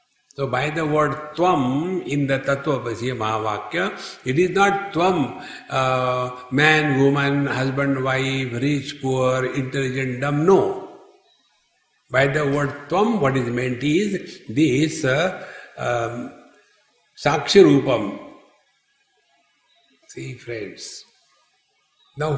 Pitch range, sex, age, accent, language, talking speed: 135-185 Hz, male, 60-79, Indian, English, 105 wpm